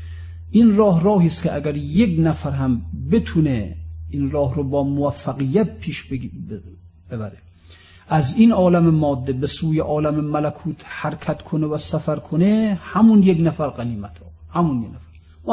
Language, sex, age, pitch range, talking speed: Persian, male, 50-69, 120-185 Hz, 150 wpm